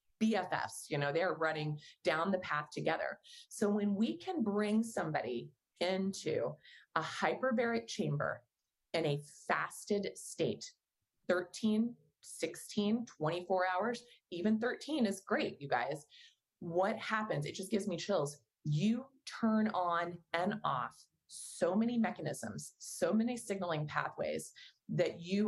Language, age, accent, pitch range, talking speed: English, 30-49, American, 150-210 Hz, 125 wpm